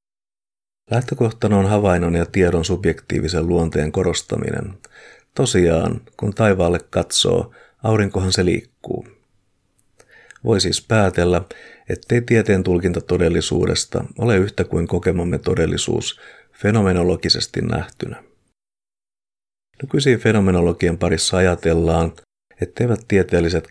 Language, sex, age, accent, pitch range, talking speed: Finnish, male, 50-69, native, 85-105 Hz, 90 wpm